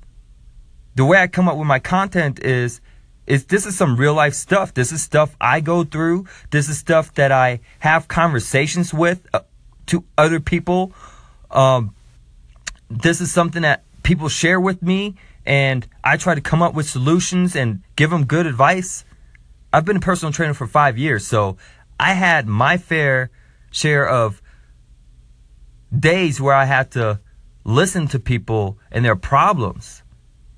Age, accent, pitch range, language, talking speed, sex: 20-39, American, 95-160 Hz, English, 160 wpm, male